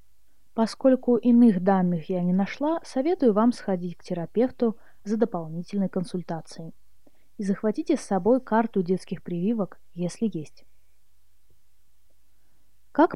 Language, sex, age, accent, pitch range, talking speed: Russian, female, 20-39, native, 175-235 Hz, 110 wpm